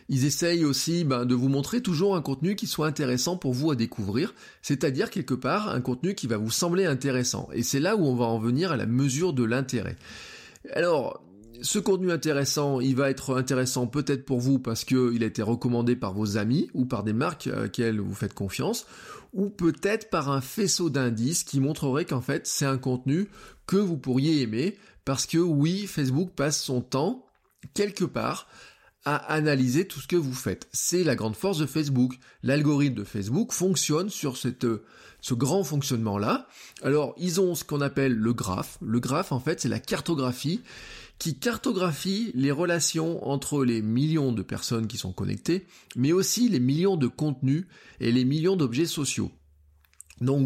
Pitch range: 120-170 Hz